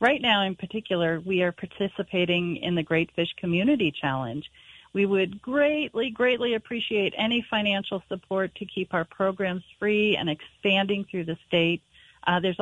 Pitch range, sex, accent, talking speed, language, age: 165-205 Hz, female, American, 155 wpm, English, 40-59